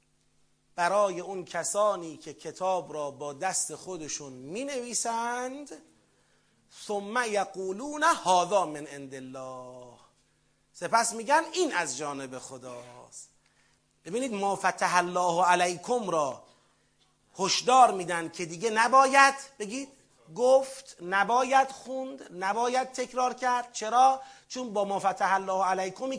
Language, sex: Persian, male